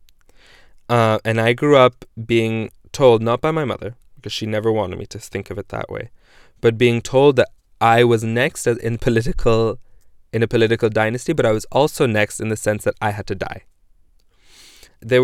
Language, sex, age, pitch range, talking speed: English, male, 20-39, 105-120 Hz, 195 wpm